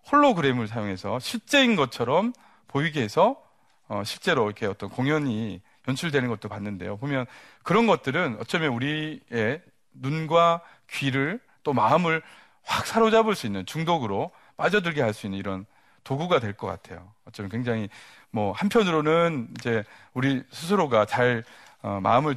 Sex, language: male, Korean